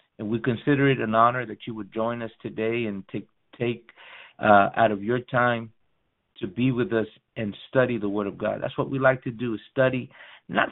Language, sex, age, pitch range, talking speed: English, male, 50-69, 110-140 Hz, 215 wpm